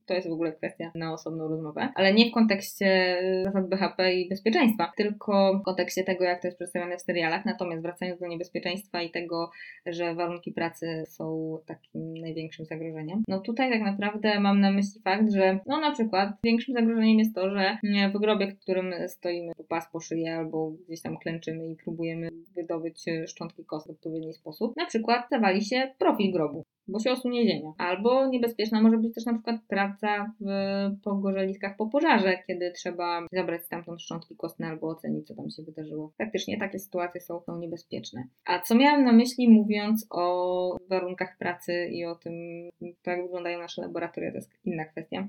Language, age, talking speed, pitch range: Polish, 20-39, 180 wpm, 170-210 Hz